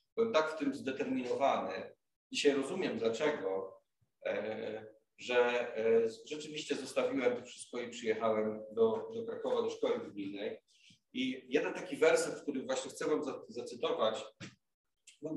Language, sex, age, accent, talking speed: Polish, male, 40-59, native, 120 wpm